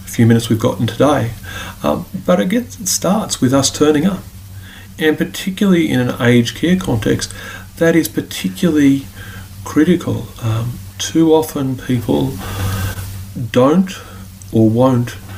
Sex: male